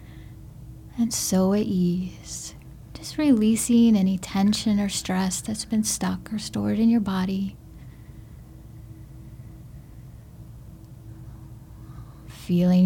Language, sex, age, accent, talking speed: English, female, 30-49, American, 90 wpm